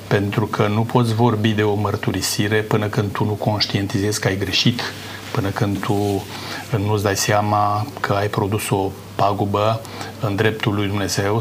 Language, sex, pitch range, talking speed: Romanian, male, 105-120 Hz, 165 wpm